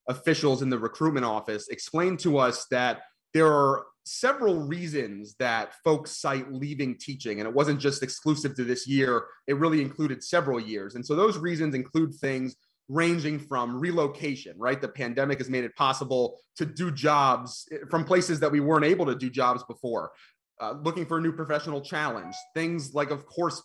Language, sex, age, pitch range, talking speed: English, male, 30-49, 125-160 Hz, 180 wpm